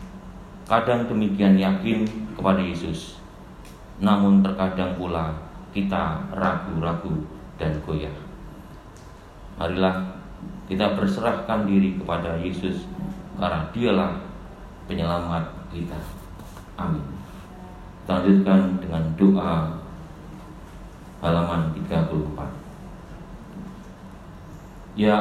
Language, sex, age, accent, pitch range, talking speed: Indonesian, male, 40-59, native, 90-100 Hz, 70 wpm